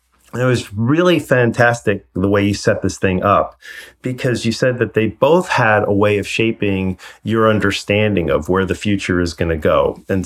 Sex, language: male, English